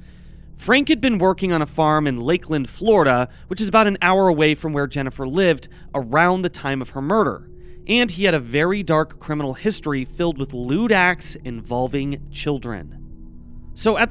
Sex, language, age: male, English, 30-49